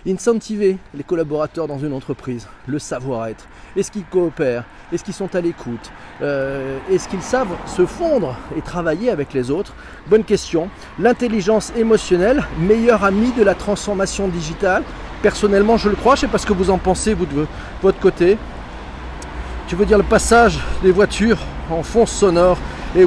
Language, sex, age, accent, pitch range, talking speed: French, male, 40-59, French, 155-215 Hz, 165 wpm